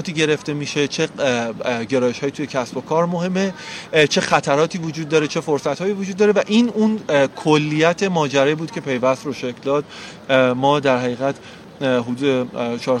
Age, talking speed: 30-49, 155 wpm